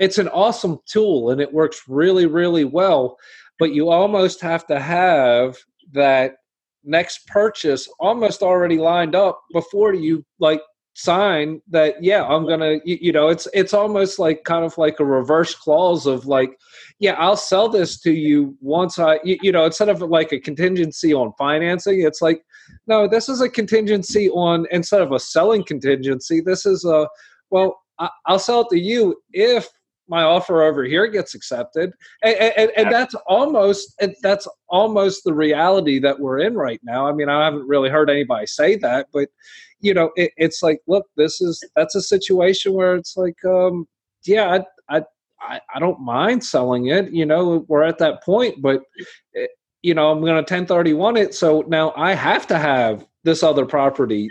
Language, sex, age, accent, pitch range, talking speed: English, male, 40-59, American, 155-195 Hz, 180 wpm